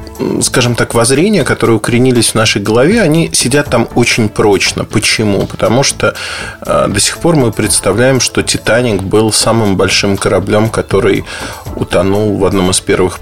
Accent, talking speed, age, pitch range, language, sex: native, 150 wpm, 30-49, 100-125 Hz, Russian, male